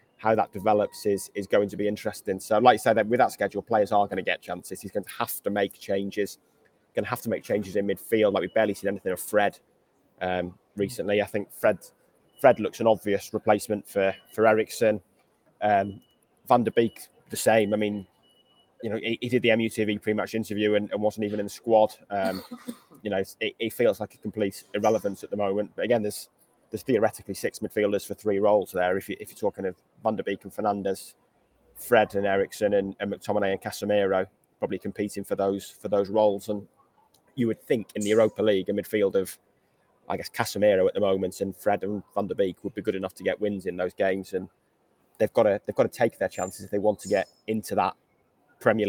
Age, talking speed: 20-39, 225 wpm